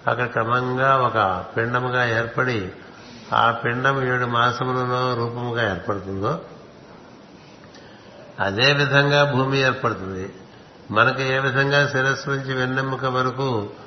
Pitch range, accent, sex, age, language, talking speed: 115-140 Hz, native, male, 60-79, Telugu, 95 wpm